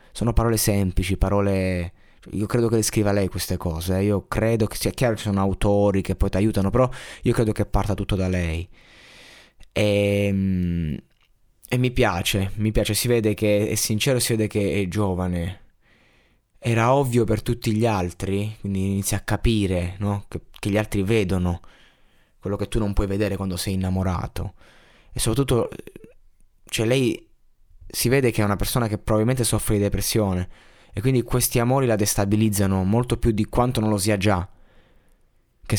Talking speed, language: 175 wpm, Italian